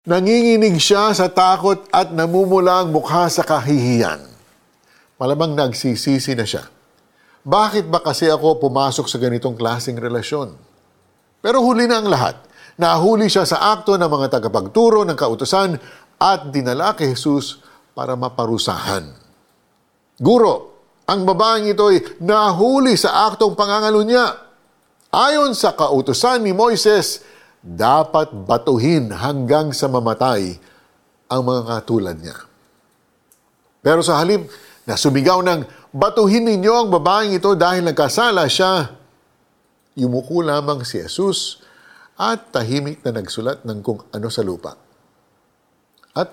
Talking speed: 120 wpm